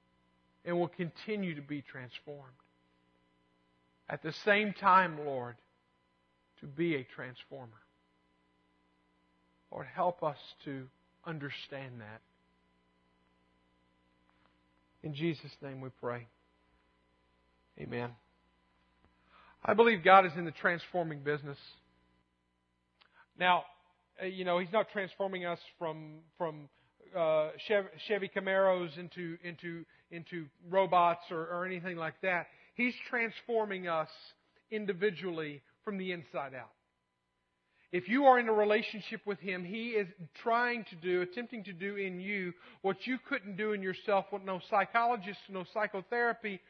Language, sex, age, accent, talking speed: English, male, 50-69, American, 120 wpm